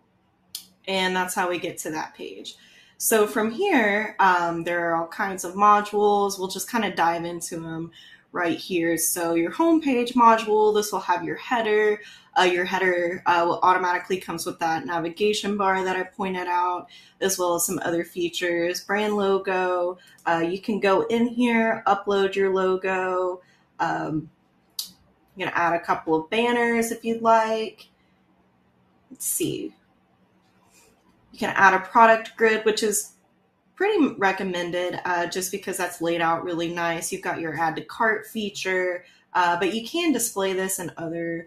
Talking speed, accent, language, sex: 165 wpm, American, English, female